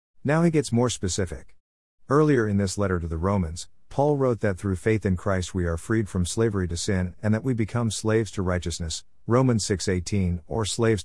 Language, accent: English, American